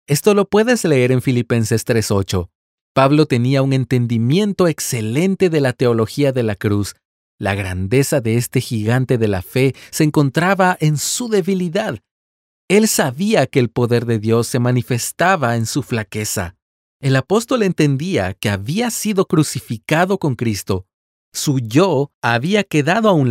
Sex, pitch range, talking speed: male, 110-150 Hz, 150 wpm